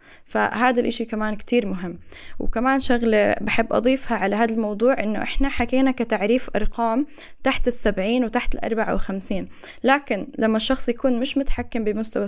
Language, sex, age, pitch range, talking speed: Arabic, female, 10-29, 215-255 Hz, 140 wpm